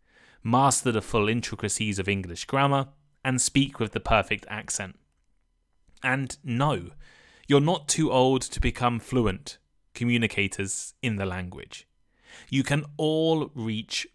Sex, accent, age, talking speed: male, British, 20-39, 125 wpm